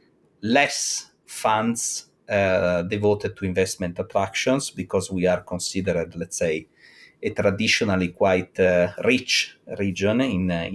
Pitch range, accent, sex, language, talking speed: 90-105 Hz, Italian, male, English, 115 wpm